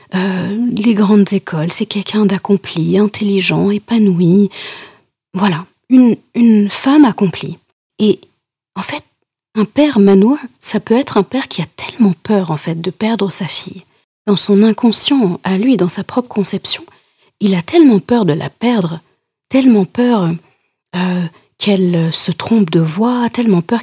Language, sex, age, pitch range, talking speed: French, female, 40-59, 185-235 Hz, 155 wpm